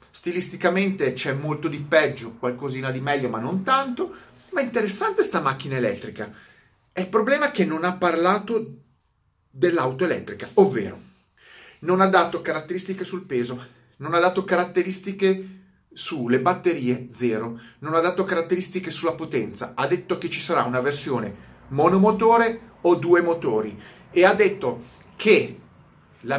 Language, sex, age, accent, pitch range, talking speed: Italian, male, 30-49, native, 135-190 Hz, 140 wpm